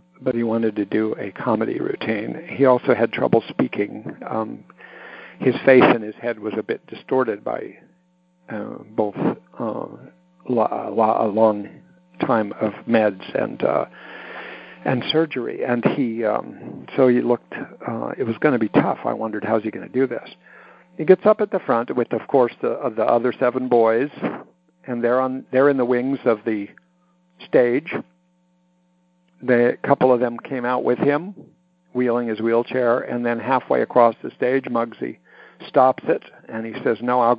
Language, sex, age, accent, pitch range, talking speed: English, male, 60-79, American, 115-135 Hz, 175 wpm